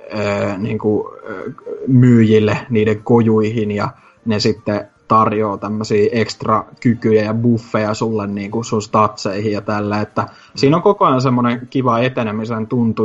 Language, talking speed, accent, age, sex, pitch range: Finnish, 125 wpm, native, 20-39, male, 105-120 Hz